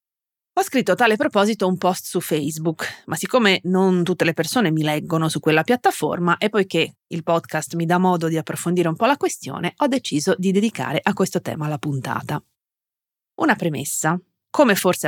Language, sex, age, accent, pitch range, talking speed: Italian, female, 30-49, native, 160-220 Hz, 185 wpm